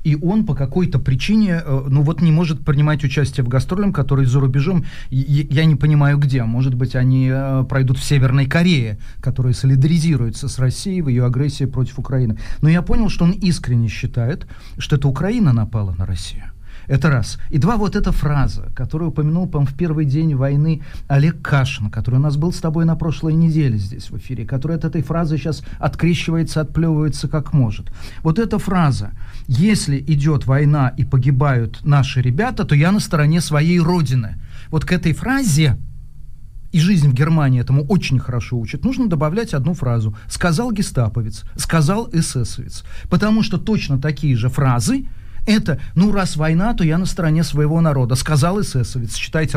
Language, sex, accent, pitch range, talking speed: Russian, male, native, 130-165 Hz, 170 wpm